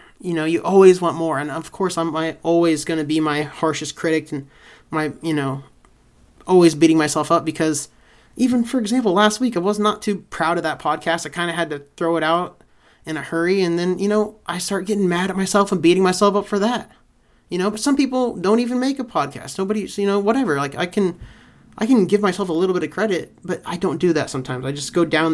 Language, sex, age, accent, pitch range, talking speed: English, male, 30-49, American, 155-210 Hz, 240 wpm